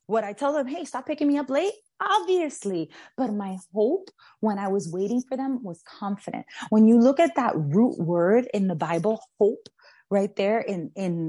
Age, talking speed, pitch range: 20-39, 195 wpm, 190-235 Hz